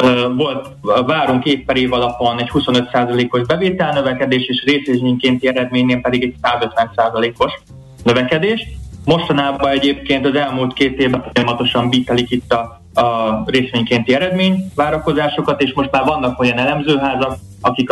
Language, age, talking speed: Hungarian, 20-39, 125 wpm